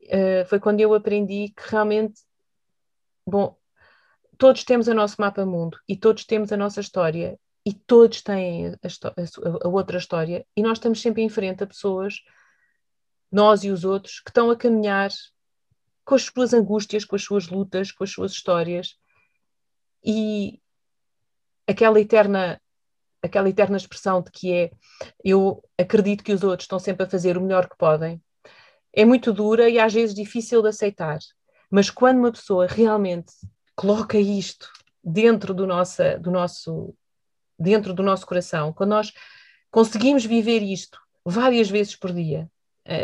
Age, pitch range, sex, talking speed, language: 30-49, 185-225 Hz, female, 145 wpm, Portuguese